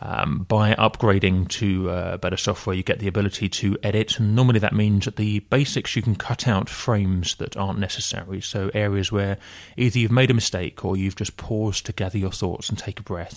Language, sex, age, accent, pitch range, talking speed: English, male, 30-49, British, 95-105 Hz, 210 wpm